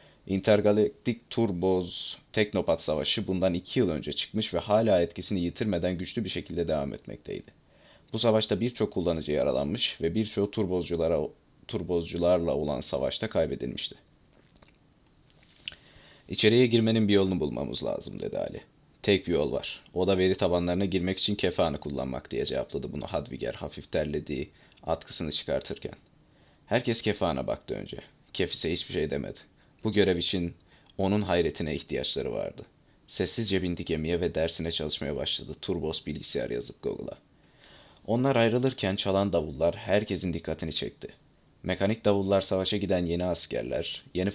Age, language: 30-49, Turkish